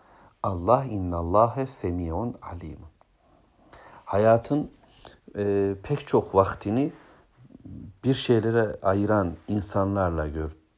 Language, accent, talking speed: Turkish, native, 80 wpm